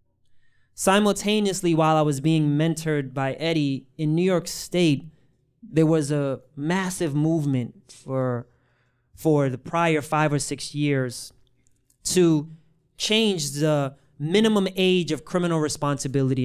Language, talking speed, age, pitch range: English, 120 wpm, 30-49, 135-185 Hz